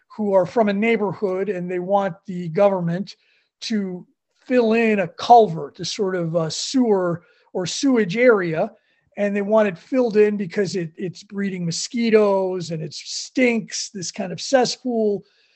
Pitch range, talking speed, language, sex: 190-230 Hz, 150 wpm, English, male